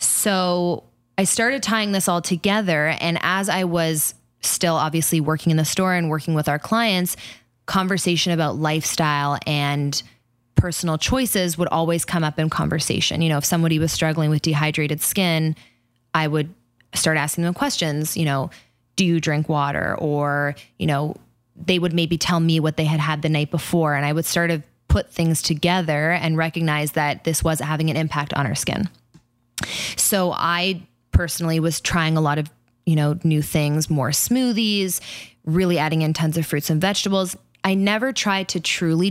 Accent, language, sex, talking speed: American, English, female, 180 wpm